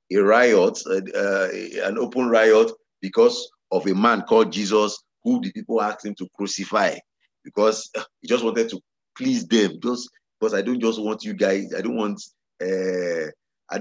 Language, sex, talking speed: English, male, 170 wpm